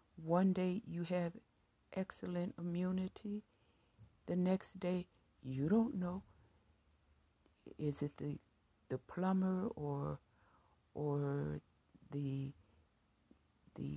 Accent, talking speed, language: American, 90 wpm, English